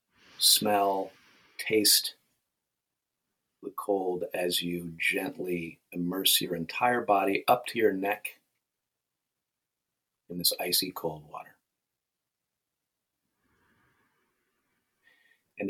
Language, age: English, 40-59